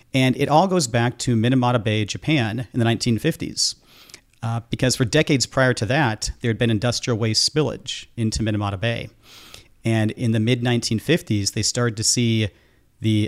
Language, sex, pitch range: English, male, 110-130 Hz